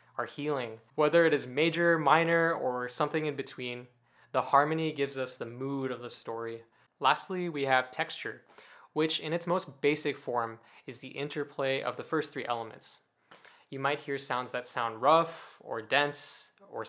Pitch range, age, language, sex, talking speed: 120-145 Hz, 20-39, English, male, 170 wpm